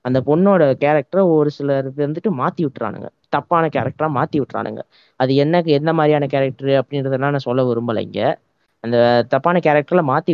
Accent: native